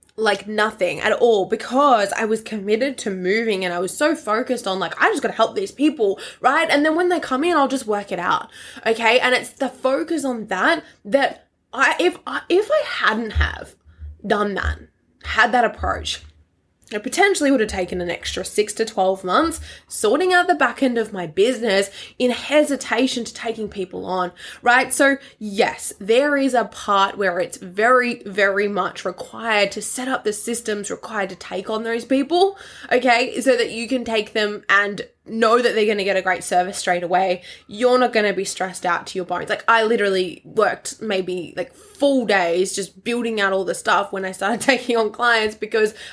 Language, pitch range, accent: English, 195-255 Hz, Australian